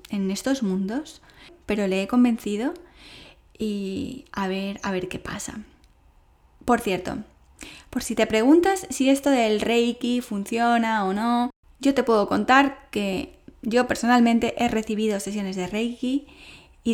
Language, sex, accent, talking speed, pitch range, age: English, female, Spanish, 140 wpm, 200-255 Hz, 10-29